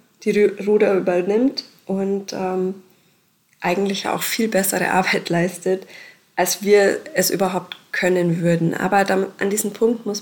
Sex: female